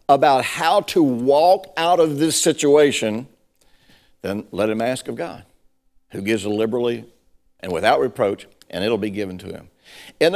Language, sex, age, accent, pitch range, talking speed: English, male, 60-79, American, 95-150 Hz, 155 wpm